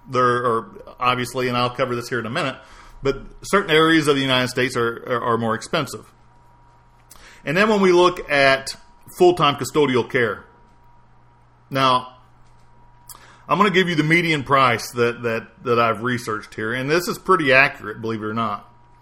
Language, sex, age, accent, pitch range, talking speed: English, male, 50-69, American, 120-150 Hz, 175 wpm